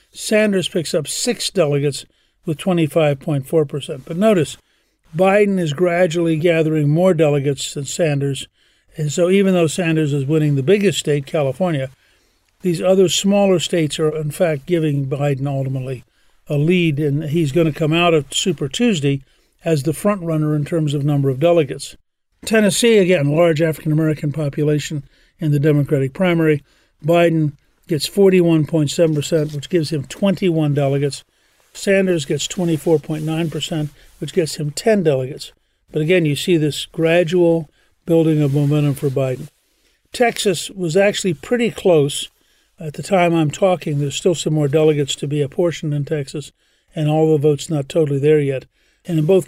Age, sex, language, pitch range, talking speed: 50-69, male, English, 145-175 Hz, 155 wpm